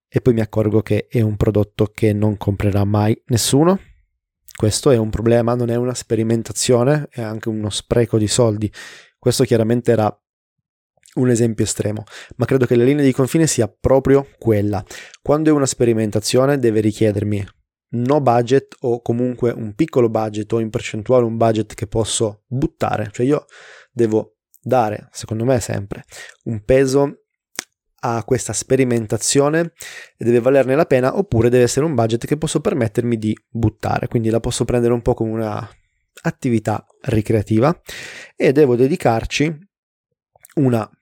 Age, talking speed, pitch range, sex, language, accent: 20-39, 155 wpm, 110-130 Hz, male, Italian, native